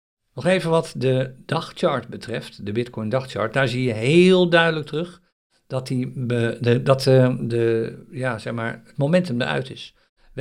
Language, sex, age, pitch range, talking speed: Dutch, male, 50-69, 115-145 Hz, 125 wpm